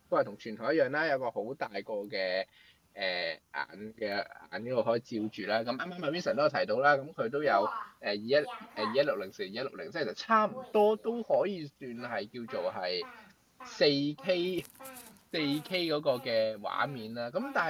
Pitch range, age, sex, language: 115-180 Hz, 20-39, male, Chinese